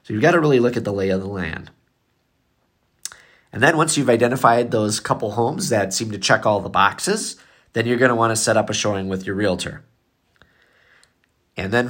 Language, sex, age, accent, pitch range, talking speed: English, male, 30-49, American, 100-130 Hz, 210 wpm